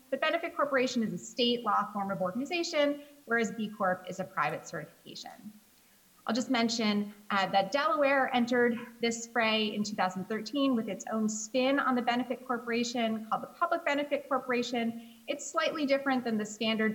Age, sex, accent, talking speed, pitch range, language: 30-49, female, American, 165 wpm, 205-255 Hz, English